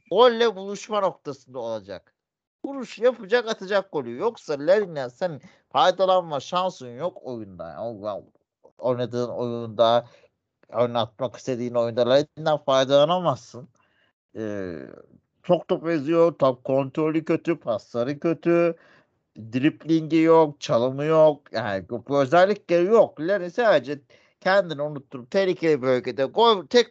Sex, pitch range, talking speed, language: male, 120-170 Hz, 105 wpm, Turkish